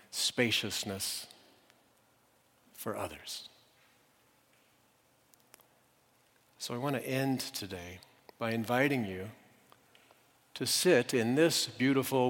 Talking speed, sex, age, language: 85 wpm, male, 50-69, English